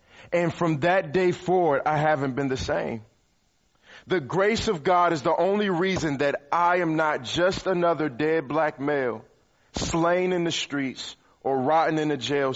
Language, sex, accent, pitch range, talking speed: English, male, American, 130-170 Hz, 170 wpm